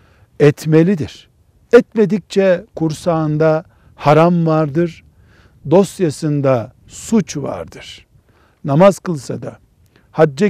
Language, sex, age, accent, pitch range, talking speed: Turkish, male, 60-79, native, 135-185 Hz, 70 wpm